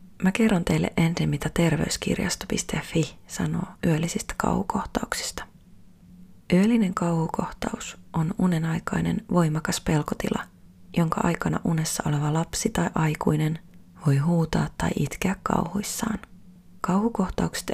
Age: 30-49